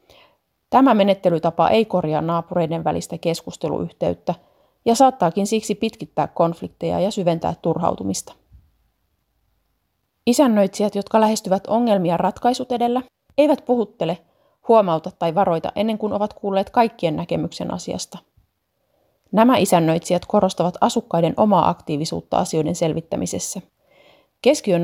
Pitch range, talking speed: 170-215 Hz, 100 wpm